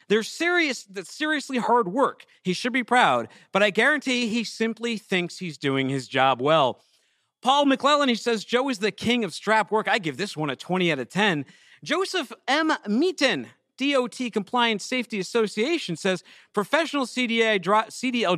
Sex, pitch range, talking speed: male, 155-235 Hz, 165 wpm